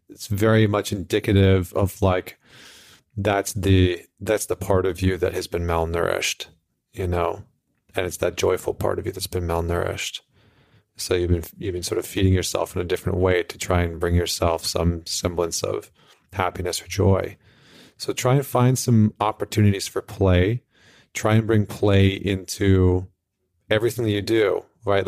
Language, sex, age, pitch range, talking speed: English, male, 40-59, 90-105 Hz, 170 wpm